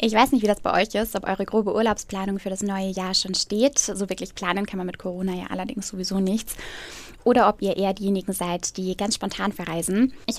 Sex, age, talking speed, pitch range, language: female, 10-29, 230 wpm, 185-215 Hz, German